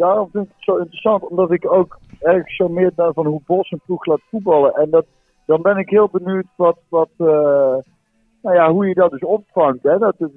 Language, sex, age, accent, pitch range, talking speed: Dutch, male, 50-69, Dutch, 130-175 Hz, 230 wpm